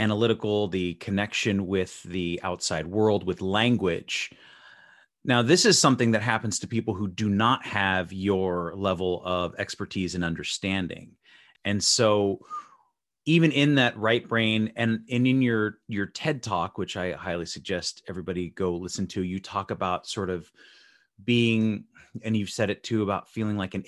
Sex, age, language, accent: male, 30-49, English, American